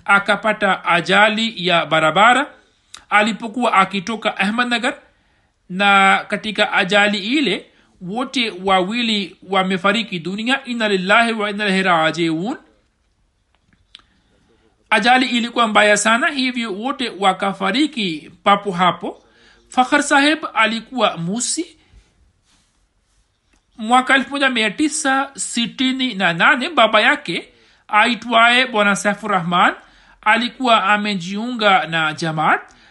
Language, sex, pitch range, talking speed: Swahili, male, 180-240 Hz, 90 wpm